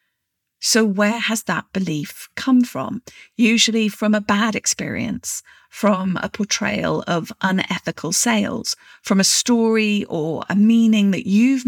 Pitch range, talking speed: 195-235 Hz, 135 wpm